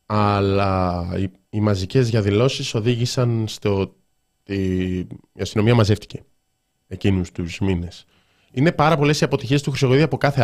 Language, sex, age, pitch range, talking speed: Greek, male, 20-39, 100-140 Hz, 125 wpm